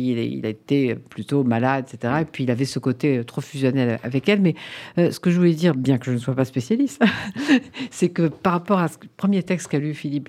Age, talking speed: 50-69, 240 wpm